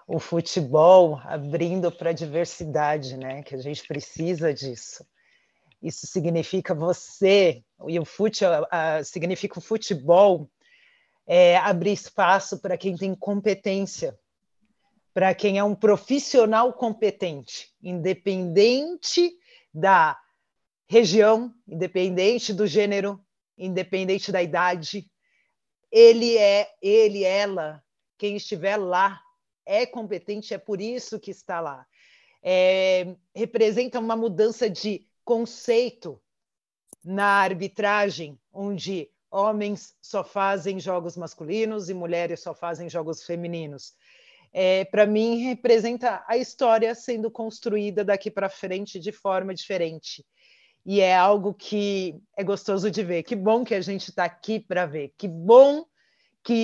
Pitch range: 180-225 Hz